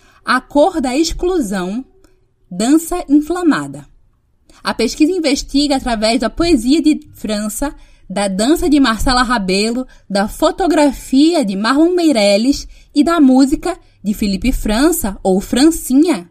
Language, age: Portuguese, 20-39